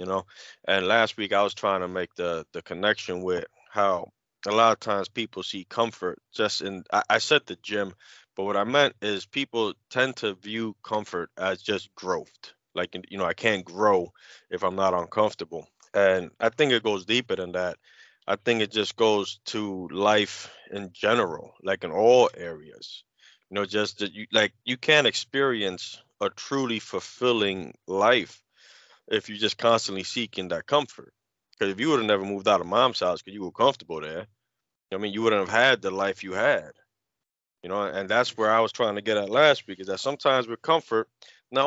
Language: English